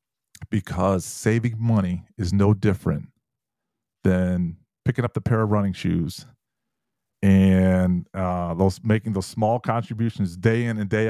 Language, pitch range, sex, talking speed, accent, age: English, 100-120 Hz, male, 135 wpm, American, 40-59